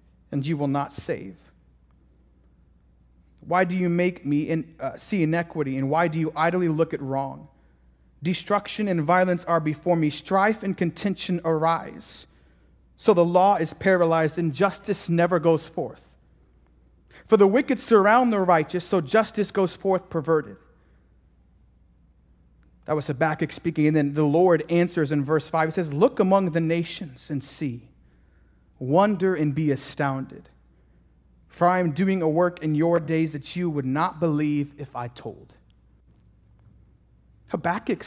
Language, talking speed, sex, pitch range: English, 150 wpm, male, 120-185 Hz